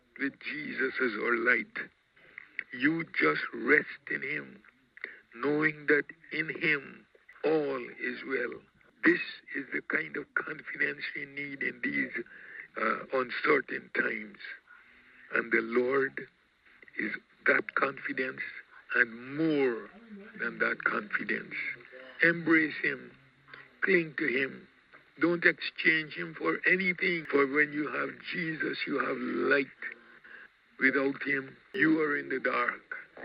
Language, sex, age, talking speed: English, male, 60-79, 120 wpm